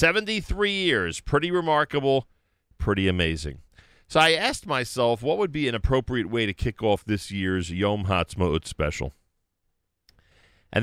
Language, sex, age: English, male, 40-59